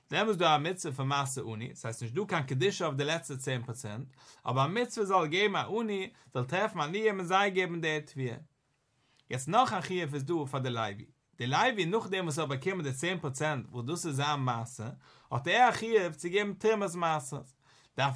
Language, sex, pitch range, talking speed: English, male, 135-190 Hz, 160 wpm